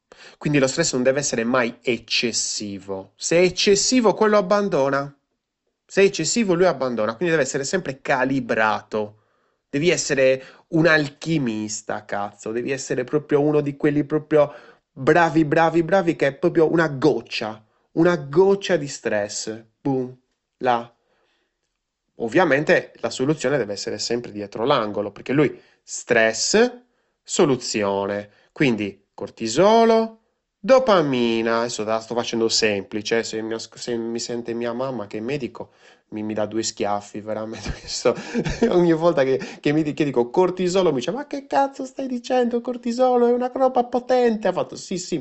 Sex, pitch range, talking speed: male, 110-180 Hz, 145 wpm